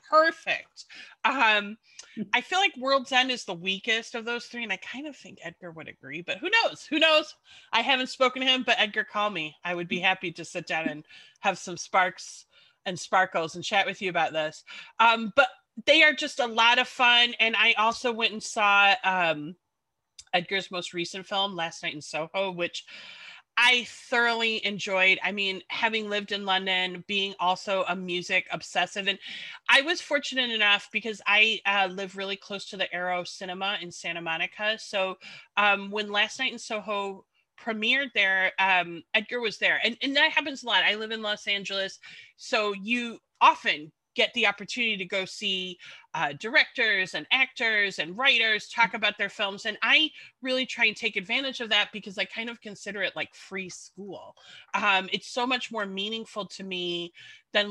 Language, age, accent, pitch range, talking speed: English, 30-49, American, 185-235 Hz, 190 wpm